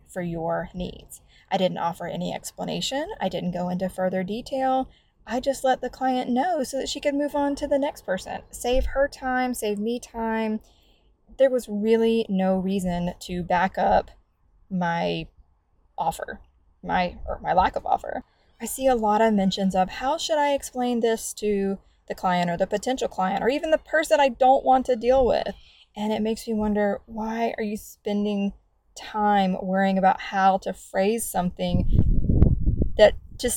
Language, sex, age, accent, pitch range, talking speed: English, female, 20-39, American, 190-245 Hz, 175 wpm